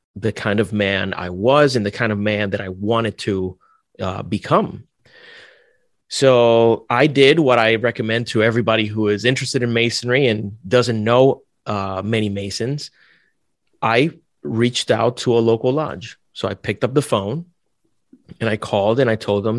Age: 30-49